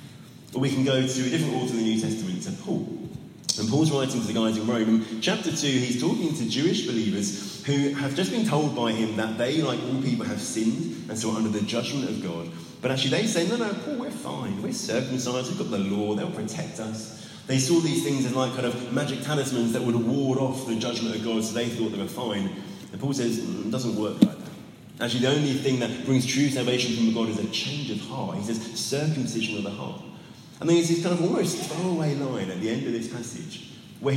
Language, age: English, 20-39